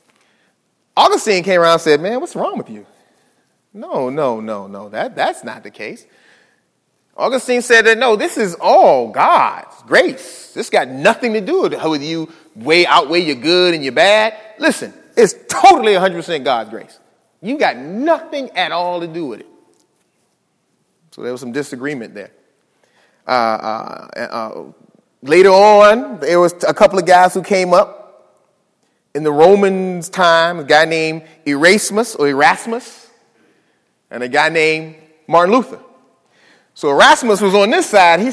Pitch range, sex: 155-225 Hz, male